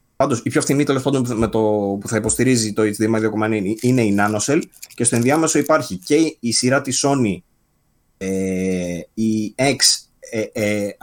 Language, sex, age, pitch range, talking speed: Greek, male, 20-39, 105-135 Hz, 180 wpm